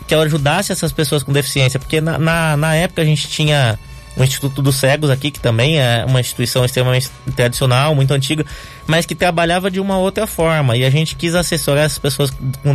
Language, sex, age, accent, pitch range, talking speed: Portuguese, male, 20-39, Brazilian, 130-155 Hz, 205 wpm